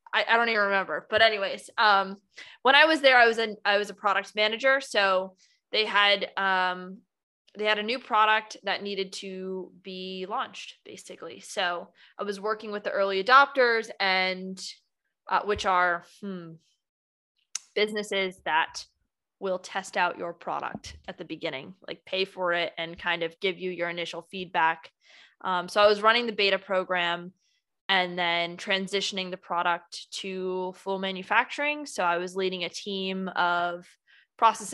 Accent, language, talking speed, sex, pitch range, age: American, English, 160 wpm, female, 180-210 Hz, 20-39